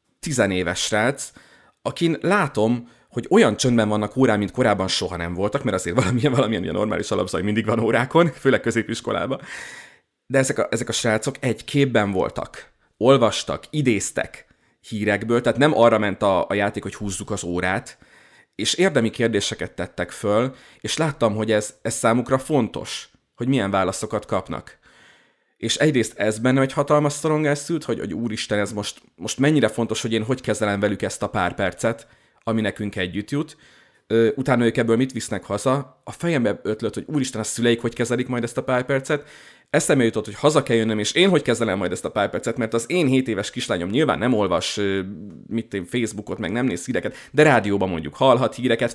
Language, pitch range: Hungarian, 105-130 Hz